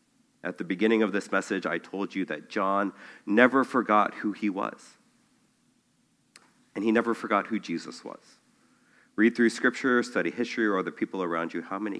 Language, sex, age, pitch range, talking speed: English, male, 40-59, 95-130 Hz, 175 wpm